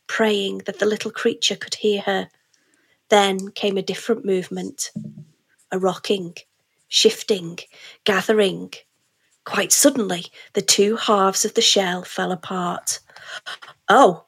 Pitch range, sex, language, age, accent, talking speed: 190-220 Hz, female, English, 30-49, British, 120 wpm